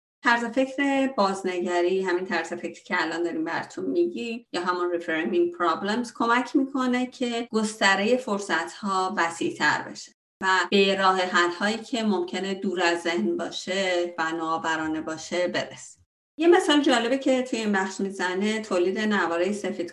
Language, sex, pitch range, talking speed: Persian, female, 175-230 Hz, 145 wpm